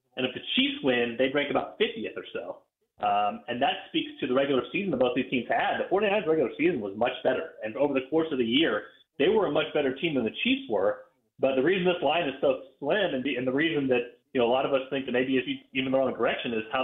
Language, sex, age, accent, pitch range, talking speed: English, male, 30-49, American, 120-150 Hz, 280 wpm